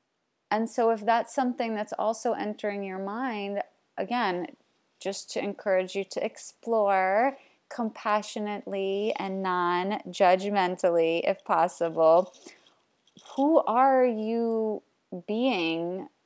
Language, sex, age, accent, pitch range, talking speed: English, female, 30-49, American, 185-225 Hz, 95 wpm